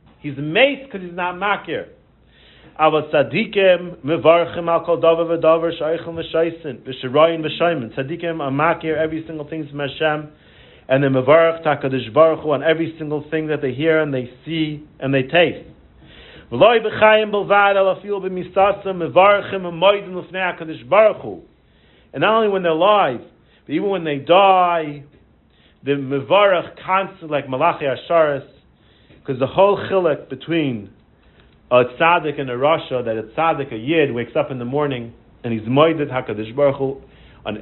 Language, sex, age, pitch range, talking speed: English, male, 40-59, 135-175 Hz, 150 wpm